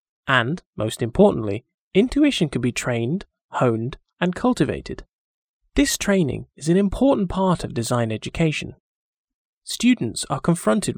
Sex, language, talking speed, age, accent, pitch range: male, English, 120 wpm, 20-39, British, 125-190 Hz